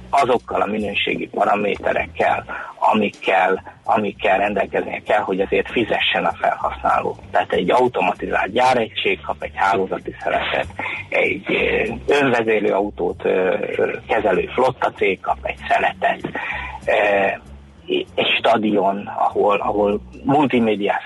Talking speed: 100 wpm